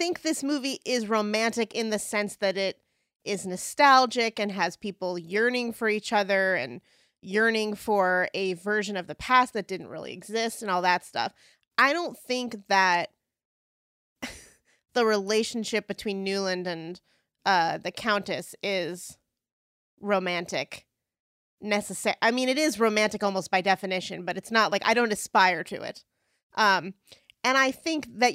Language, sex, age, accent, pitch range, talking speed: English, female, 30-49, American, 185-230 Hz, 155 wpm